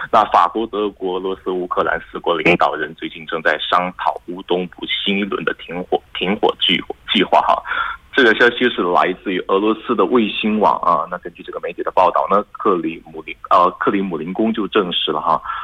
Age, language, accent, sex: 30-49, Korean, Chinese, male